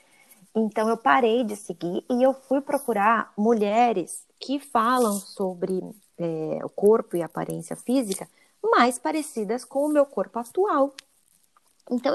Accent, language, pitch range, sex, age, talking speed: Brazilian, Portuguese, 185-260 Hz, female, 20-39, 140 wpm